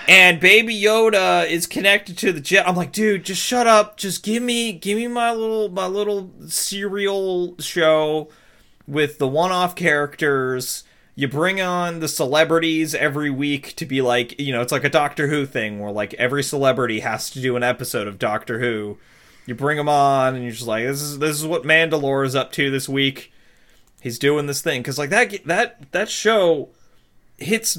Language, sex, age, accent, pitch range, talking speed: English, male, 30-49, American, 120-175 Hz, 195 wpm